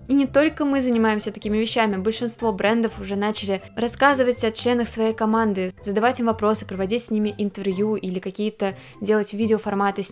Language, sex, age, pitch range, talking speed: Russian, female, 20-39, 195-220 Hz, 165 wpm